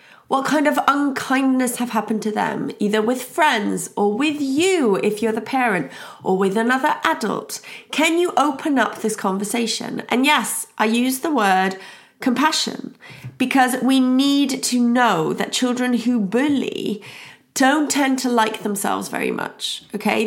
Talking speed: 155 wpm